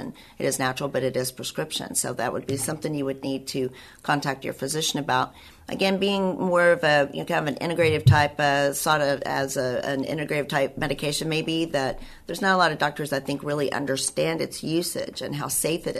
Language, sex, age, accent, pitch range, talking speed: English, female, 50-69, American, 130-155 Hz, 220 wpm